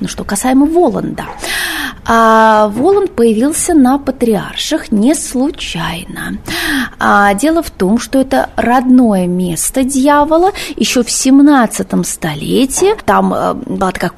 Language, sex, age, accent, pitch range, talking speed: Russian, female, 20-39, native, 220-275 Hz, 115 wpm